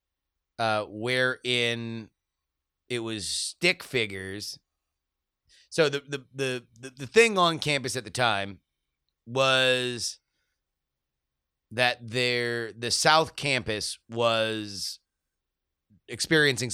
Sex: male